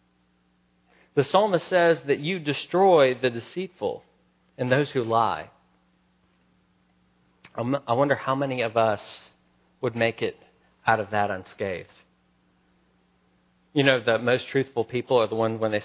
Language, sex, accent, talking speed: English, male, American, 135 wpm